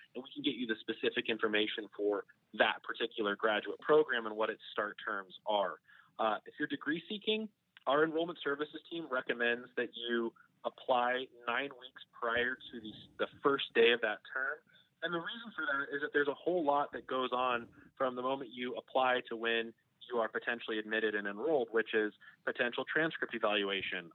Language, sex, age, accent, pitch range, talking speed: English, male, 20-39, American, 110-140 Hz, 185 wpm